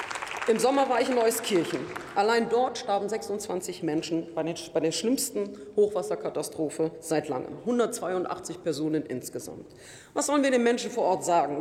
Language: German